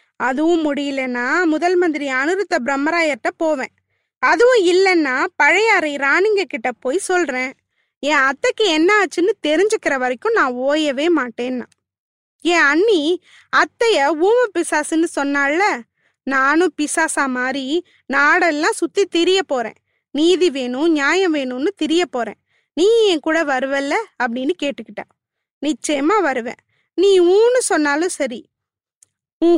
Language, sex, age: Tamil, female, 20-39